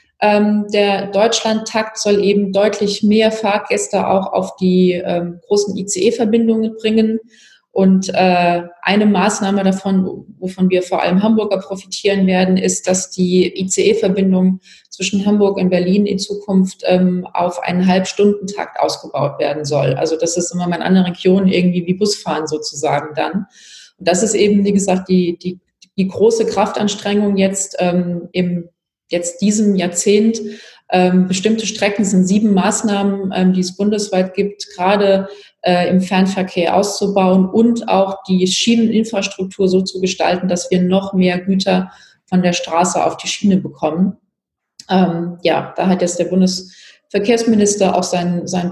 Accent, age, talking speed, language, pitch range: German, 30-49, 150 wpm, German, 180-205 Hz